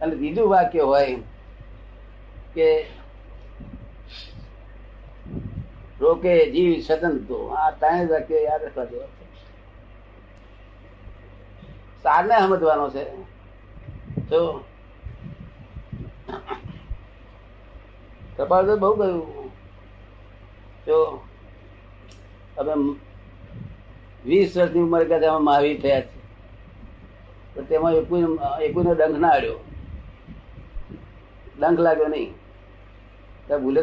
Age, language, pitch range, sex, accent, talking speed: 60-79, Gujarati, 100-160 Hz, male, native, 55 wpm